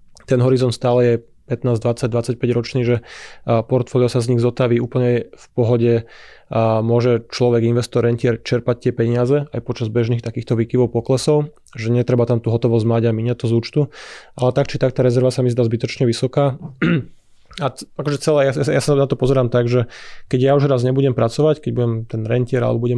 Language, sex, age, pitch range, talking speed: Slovak, male, 20-39, 120-135 Hz, 195 wpm